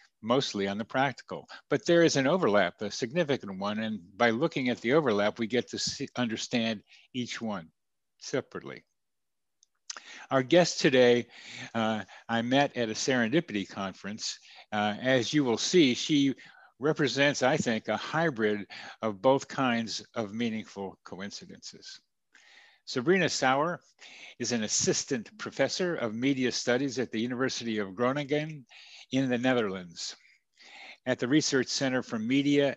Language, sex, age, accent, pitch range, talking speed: English, male, 60-79, American, 110-135 Hz, 135 wpm